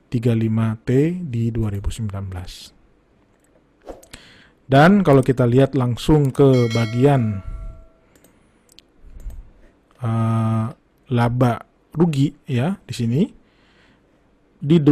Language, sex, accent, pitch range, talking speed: Indonesian, male, native, 115-155 Hz, 70 wpm